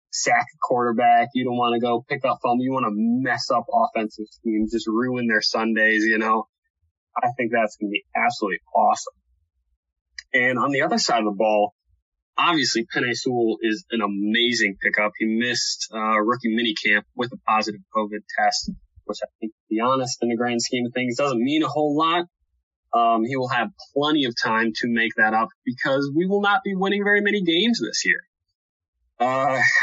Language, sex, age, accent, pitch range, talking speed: English, male, 20-39, American, 105-130 Hz, 195 wpm